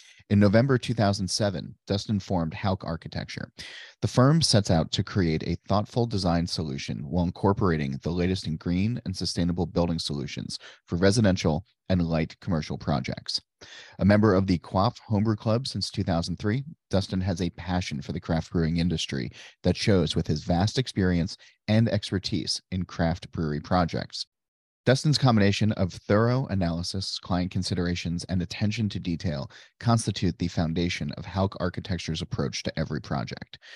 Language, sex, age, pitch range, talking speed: English, male, 30-49, 85-105 Hz, 150 wpm